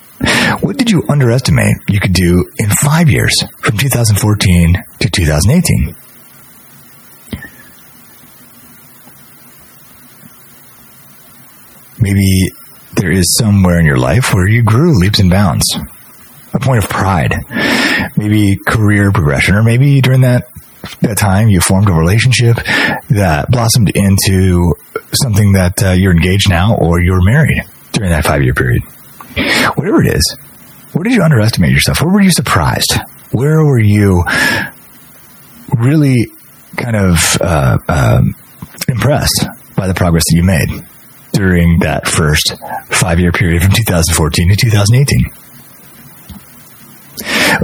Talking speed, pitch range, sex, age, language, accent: 120 wpm, 95-130 Hz, male, 30-49, English, American